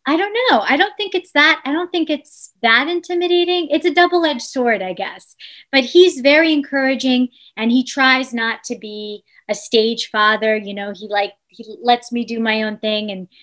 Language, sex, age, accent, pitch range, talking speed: English, female, 20-39, American, 220-285 Hz, 200 wpm